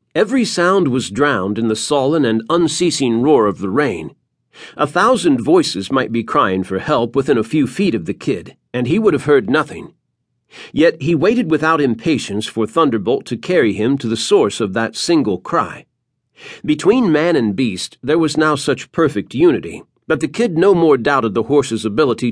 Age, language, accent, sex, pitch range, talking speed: 50-69, English, American, male, 115-170 Hz, 190 wpm